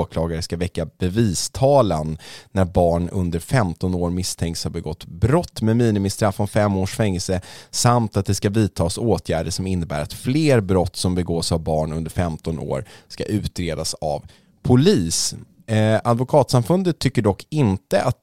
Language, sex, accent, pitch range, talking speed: English, male, Swedish, 85-105 Hz, 150 wpm